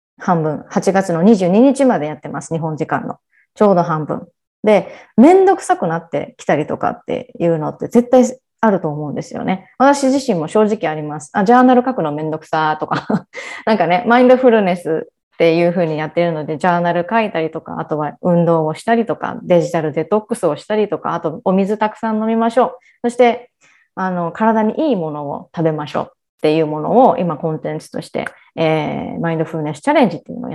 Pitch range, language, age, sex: 165-235 Hz, Japanese, 20-39, female